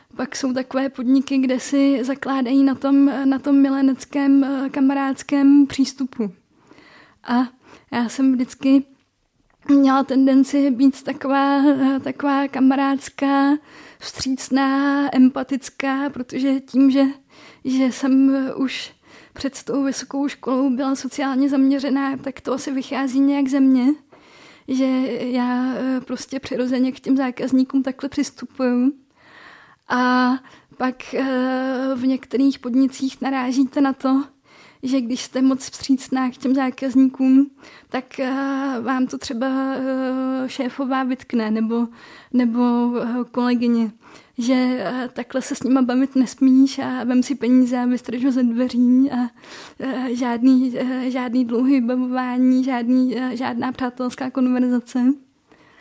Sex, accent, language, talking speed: female, native, Czech, 110 wpm